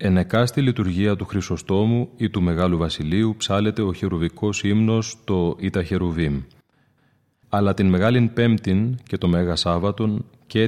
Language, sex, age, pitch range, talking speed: Greek, male, 30-49, 85-110 Hz, 135 wpm